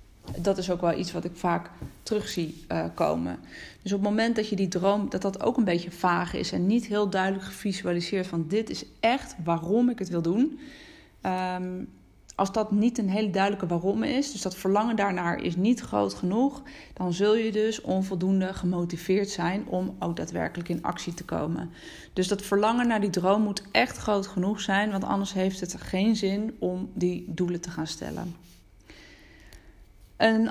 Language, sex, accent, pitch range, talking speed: Dutch, female, Dutch, 175-215 Hz, 190 wpm